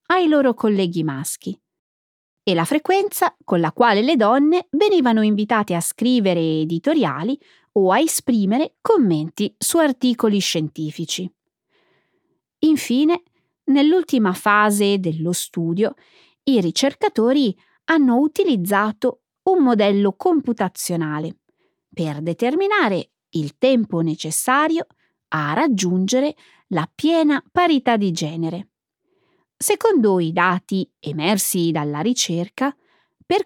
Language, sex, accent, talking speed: Italian, female, native, 100 wpm